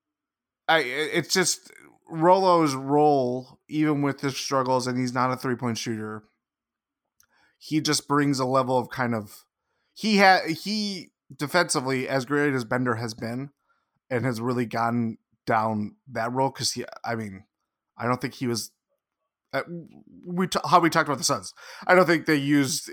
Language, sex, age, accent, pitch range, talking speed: English, male, 20-39, American, 115-150 Hz, 160 wpm